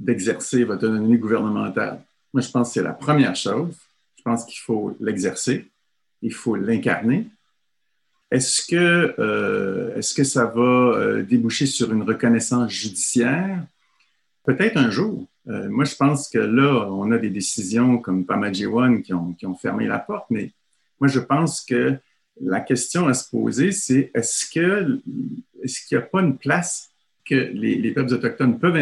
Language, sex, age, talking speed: French, male, 50-69, 165 wpm